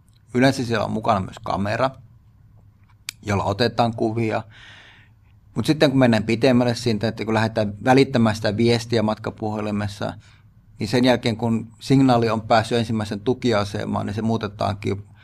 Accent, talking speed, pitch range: native, 135 wpm, 105-125 Hz